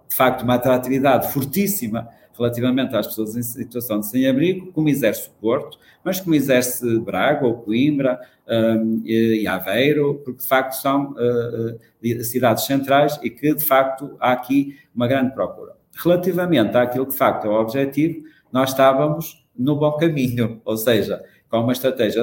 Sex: male